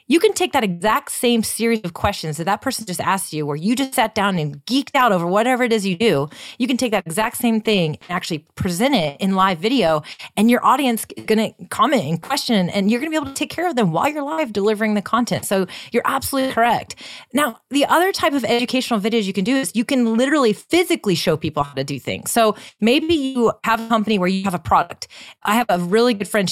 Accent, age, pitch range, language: American, 30-49, 175-245 Hz, English